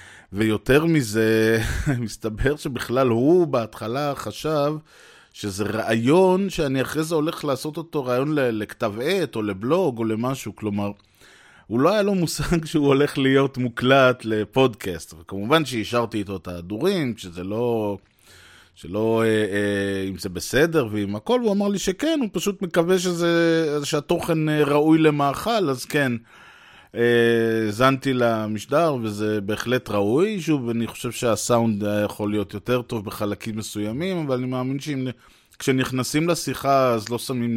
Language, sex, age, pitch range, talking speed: Hebrew, male, 20-39, 105-135 Hz, 135 wpm